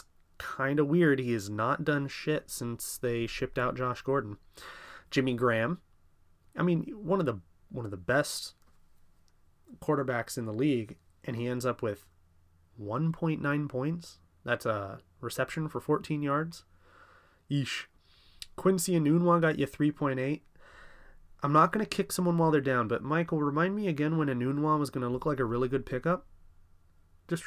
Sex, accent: male, American